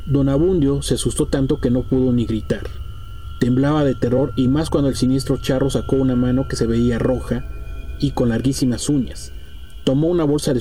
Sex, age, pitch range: male, 40-59, 90-135 Hz